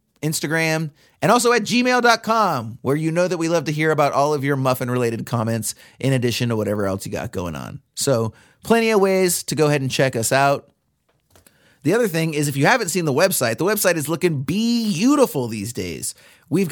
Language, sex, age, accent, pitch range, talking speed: English, male, 30-49, American, 125-165 Hz, 210 wpm